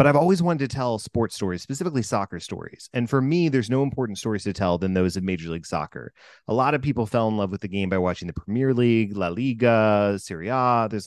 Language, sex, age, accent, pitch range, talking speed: English, male, 30-49, American, 100-135 Hz, 250 wpm